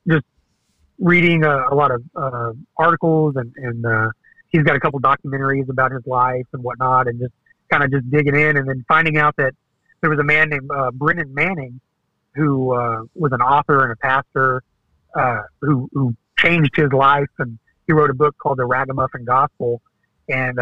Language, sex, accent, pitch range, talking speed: English, male, American, 130-155 Hz, 190 wpm